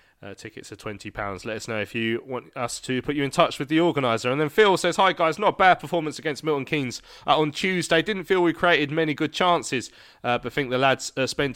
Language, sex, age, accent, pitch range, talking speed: English, male, 20-39, British, 115-145 Hz, 255 wpm